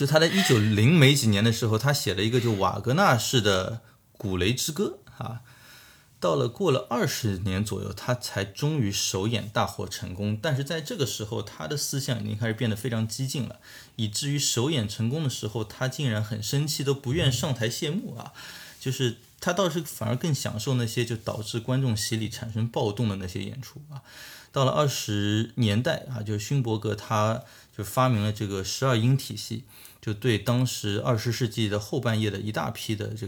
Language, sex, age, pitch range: Chinese, male, 20-39, 105-130 Hz